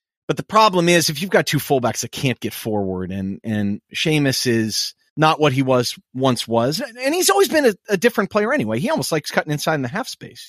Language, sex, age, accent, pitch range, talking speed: English, male, 30-49, American, 120-180 Hz, 235 wpm